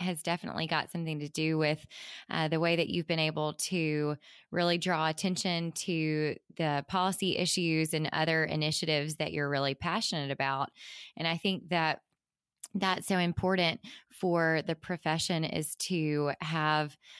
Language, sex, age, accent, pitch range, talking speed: English, female, 20-39, American, 150-180 Hz, 150 wpm